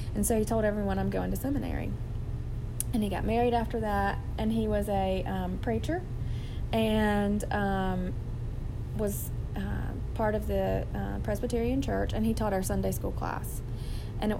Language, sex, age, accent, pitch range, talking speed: English, female, 30-49, American, 100-120 Hz, 165 wpm